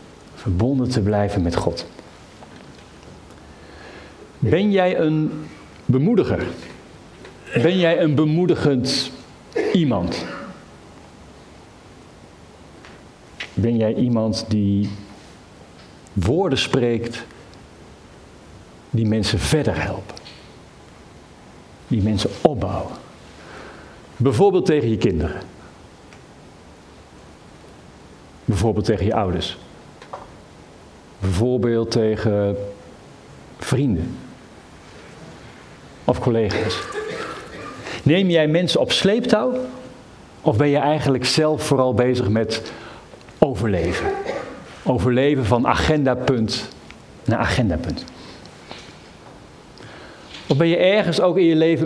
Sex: male